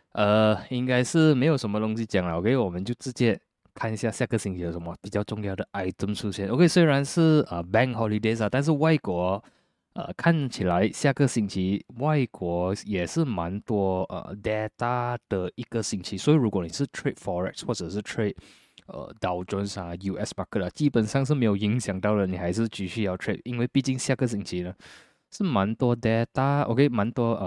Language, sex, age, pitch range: Chinese, male, 20-39, 95-130 Hz